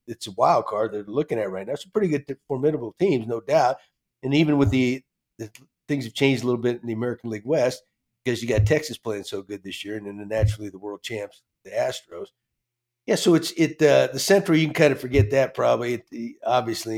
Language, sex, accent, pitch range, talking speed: English, male, American, 110-145 Hz, 235 wpm